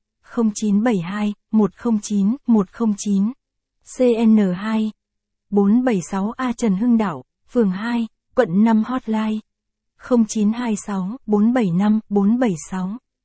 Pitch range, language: 195-230 Hz, Vietnamese